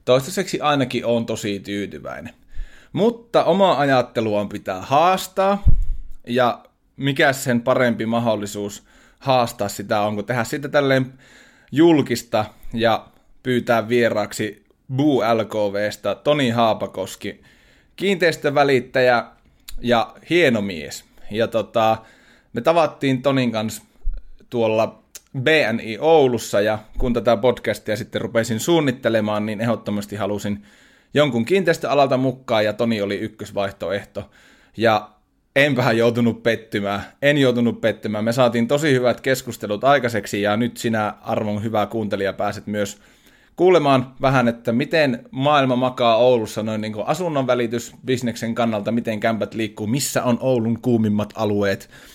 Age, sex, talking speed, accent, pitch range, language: 30-49, male, 120 wpm, native, 105-130 Hz, Finnish